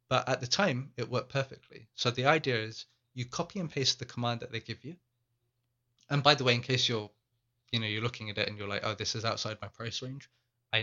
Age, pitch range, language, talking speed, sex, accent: 20-39, 115-130 Hz, English, 250 wpm, male, British